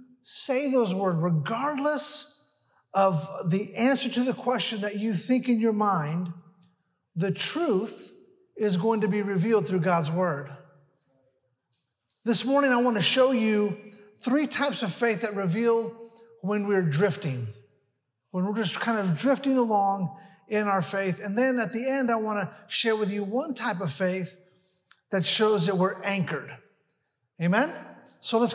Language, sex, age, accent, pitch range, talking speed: English, male, 50-69, American, 185-240 Hz, 160 wpm